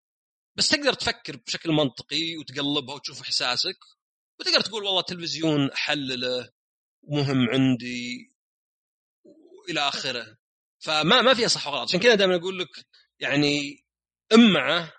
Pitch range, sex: 135-215 Hz, male